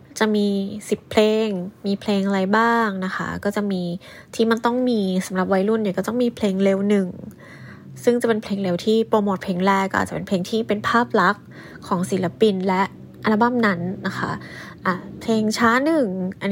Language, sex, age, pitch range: English, female, 20-39, 190-235 Hz